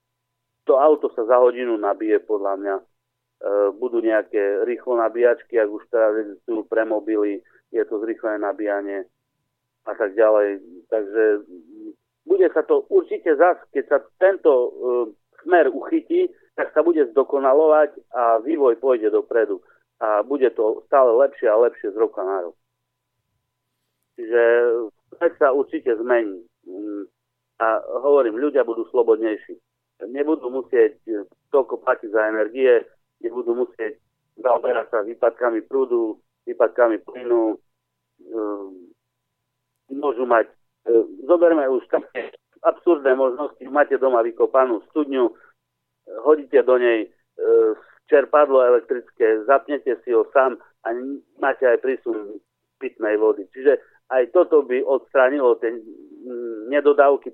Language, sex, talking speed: Slovak, male, 115 wpm